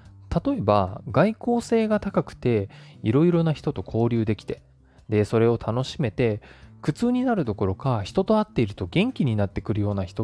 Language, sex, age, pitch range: Japanese, male, 20-39, 105-165 Hz